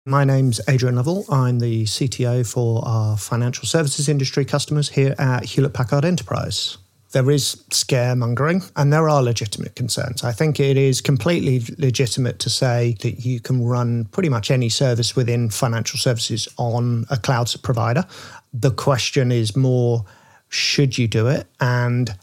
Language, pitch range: English, 115-135 Hz